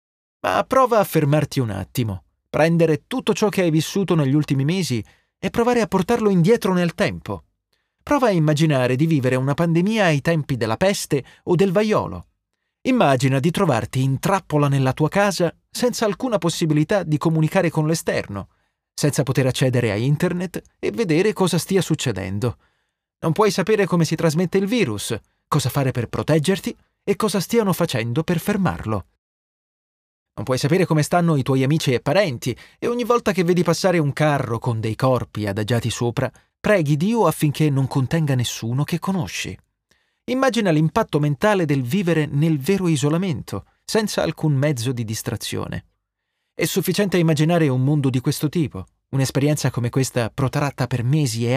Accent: native